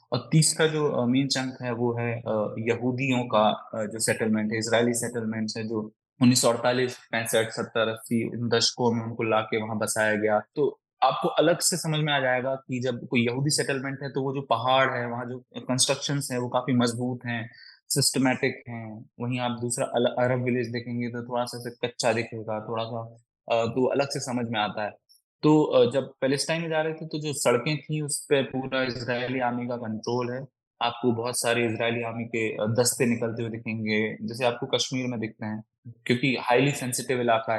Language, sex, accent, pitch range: English, male, Indian, 115-135 Hz